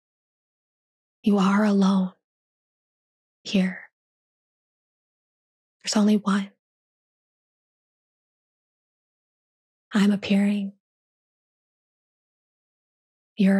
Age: 20-39